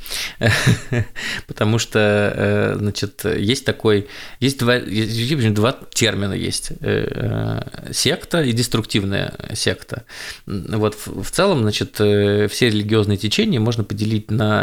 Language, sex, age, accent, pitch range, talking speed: Russian, male, 20-39, native, 105-120 Hz, 95 wpm